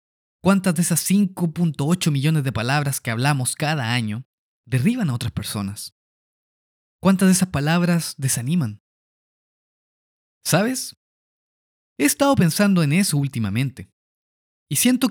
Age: 30-49